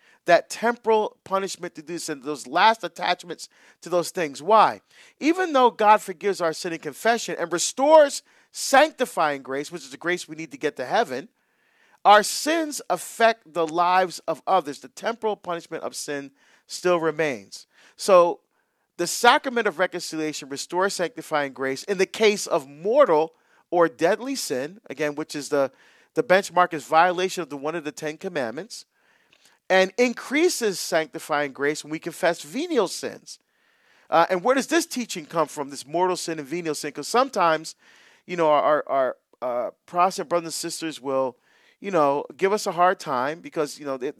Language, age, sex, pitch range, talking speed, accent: English, 40-59, male, 155-215 Hz, 170 wpm, American